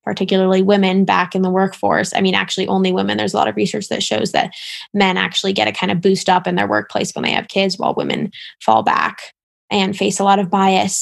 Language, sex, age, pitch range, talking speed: English, female, 10-29, 190-225 Hz, 240 wpm